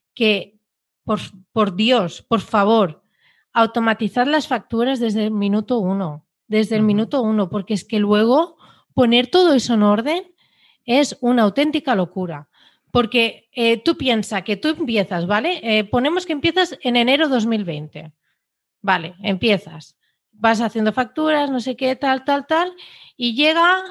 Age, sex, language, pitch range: 40-59, female, Spanish, 200-280 Hz